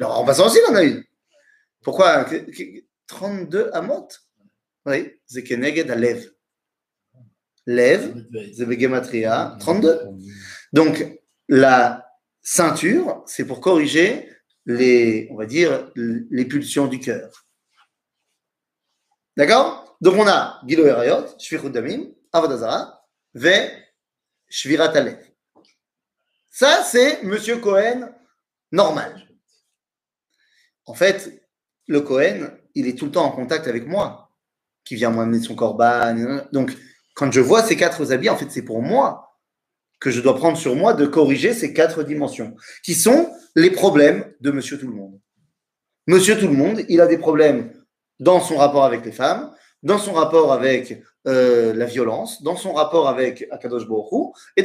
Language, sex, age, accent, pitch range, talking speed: French, male, 30-49, French, 120-200 Hz, 135 wpm